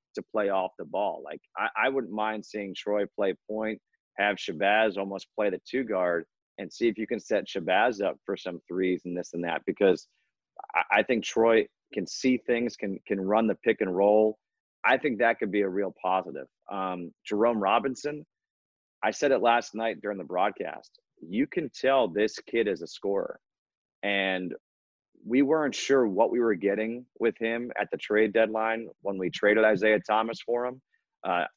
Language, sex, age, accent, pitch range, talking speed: English, male, 30-49, American, 100-120 Hz, 190 wpm